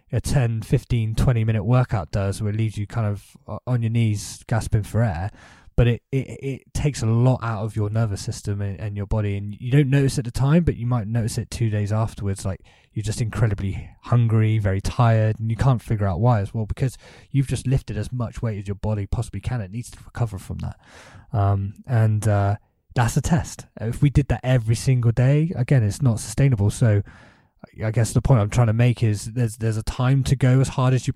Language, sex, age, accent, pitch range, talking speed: English, male, 20-39, British, 105-120 Hz, 230 wpm